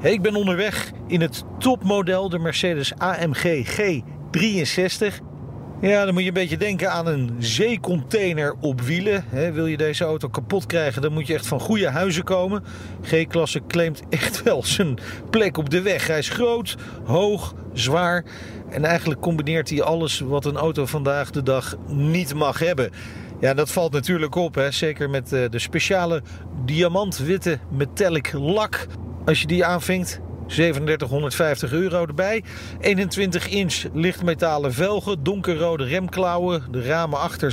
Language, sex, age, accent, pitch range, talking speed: Dutch, male, 40-59, Dutch, 145-185 Hz, 145 wpm